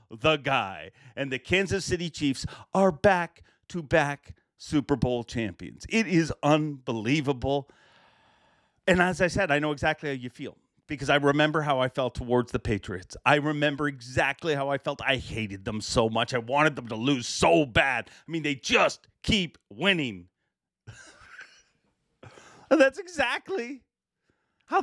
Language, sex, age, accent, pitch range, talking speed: English, male, 40-59, American, 140-225 Hz, 145 wpm